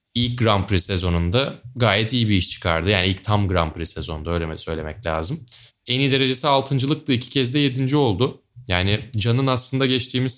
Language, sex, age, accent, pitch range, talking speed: Turkish, male, 30-49, native, 95-125 Hz, 180 wpm